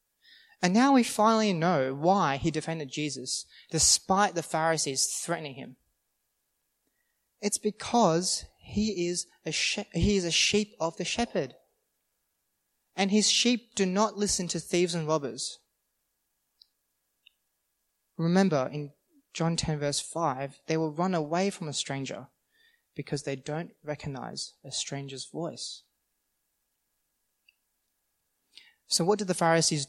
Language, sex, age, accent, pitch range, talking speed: English, male, 20-39, Australian, 150-200 Hz, 125 wpm